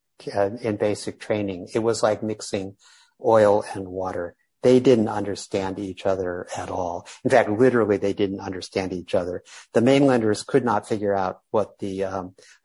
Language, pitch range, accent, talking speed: English, 100-115 Hz, American, 160 wpm